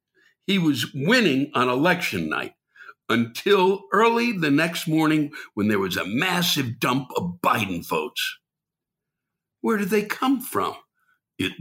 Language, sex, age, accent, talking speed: English, male, 60-79, American, 135 wpm